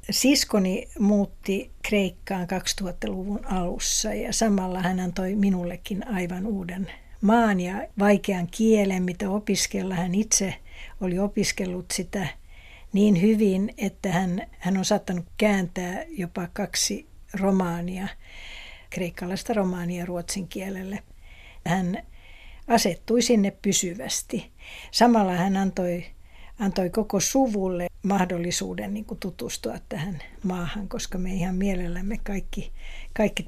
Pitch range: 180-210 Hz